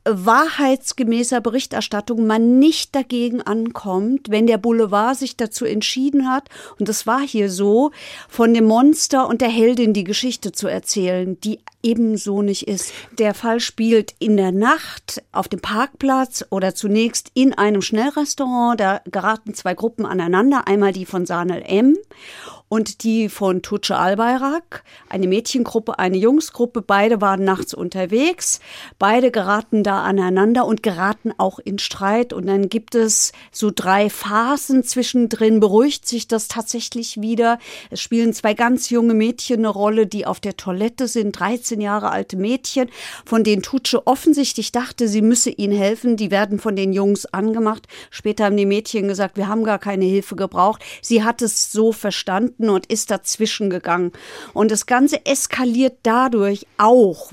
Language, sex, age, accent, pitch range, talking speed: German, female, 50-69, German, 205-240 Hz, 155 wpm